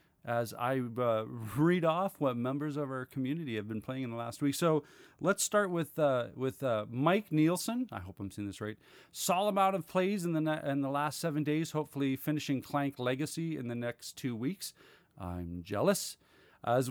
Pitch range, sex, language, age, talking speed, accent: 115-165 Hz, male, English, 40-59, 200 wpm, American